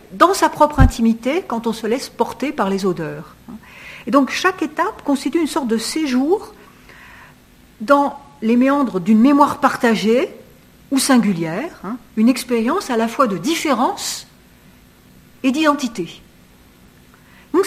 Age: 60-79